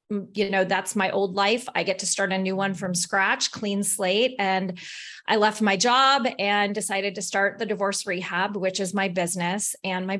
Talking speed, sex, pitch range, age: 205 wpm, female, 185-210 Hz, 30-49